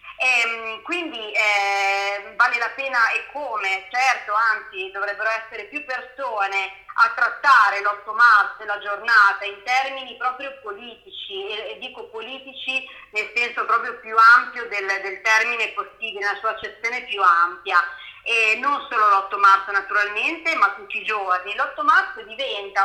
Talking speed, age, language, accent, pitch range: 145 wpm, 30-49, Italian, native, 205-255 Hz